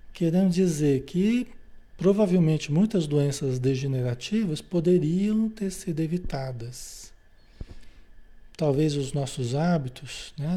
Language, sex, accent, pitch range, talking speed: Portuguese, male, Brazilian, 140-195 Hz, 90 wpm